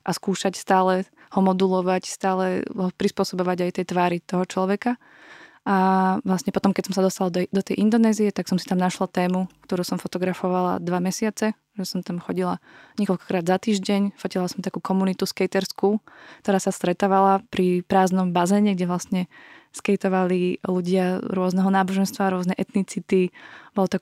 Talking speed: 155 wpm